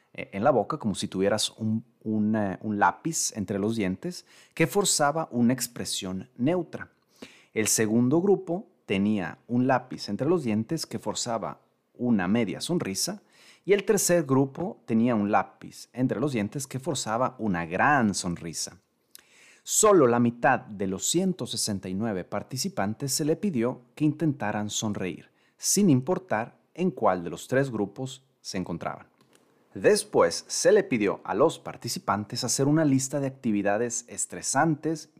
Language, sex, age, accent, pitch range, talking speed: Spanish, male, 30-49, Mexican, 105-155 Hz, 140 wpm